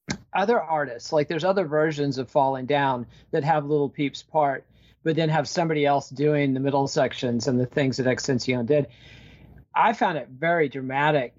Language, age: English, 40-59